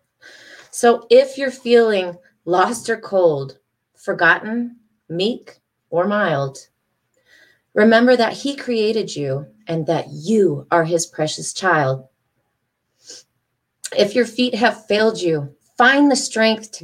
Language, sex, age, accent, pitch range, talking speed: English, female, 30-49, American, 145-205 Hz, 120 wpm